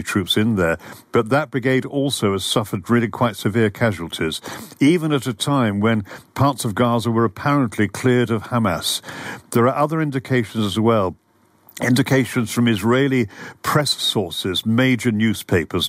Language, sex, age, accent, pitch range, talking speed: English, male, 50-69, British, 105-125 Hz, 145 wpm